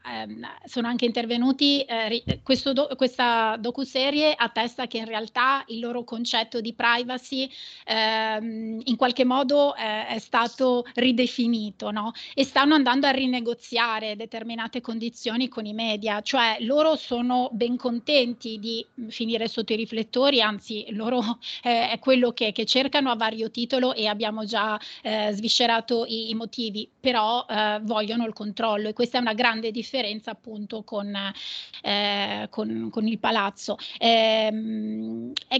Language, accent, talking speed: Italian, native, 140 wpm